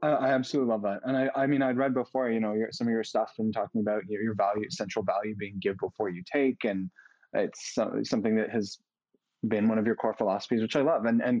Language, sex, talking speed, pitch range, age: English, male, 245 wpm, 110-130 Hz, 20-39